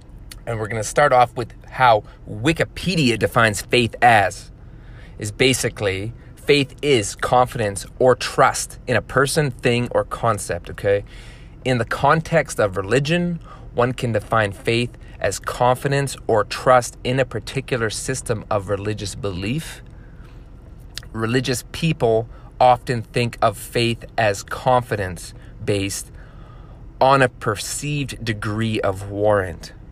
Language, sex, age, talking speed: English, male, 30-49, 120 wpm